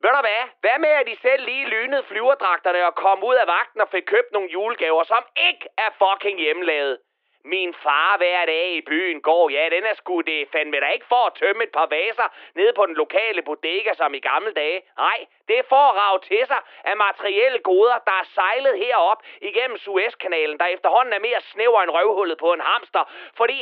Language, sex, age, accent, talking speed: Danish, male, 30-49, native, 210 wpm